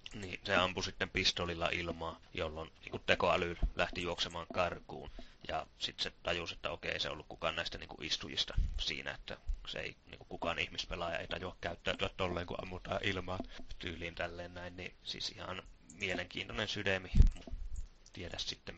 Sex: male